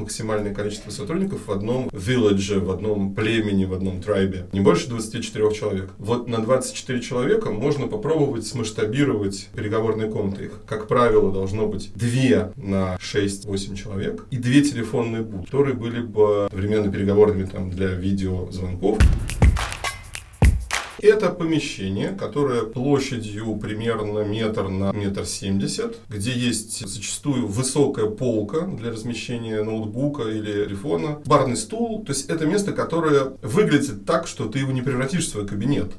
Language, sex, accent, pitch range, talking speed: Russian, male, native, 100-135 Hz, 135 wpm